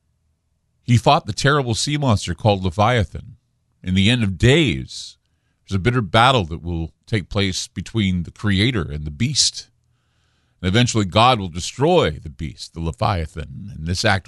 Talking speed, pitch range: 160 wpm, 85-115 Hz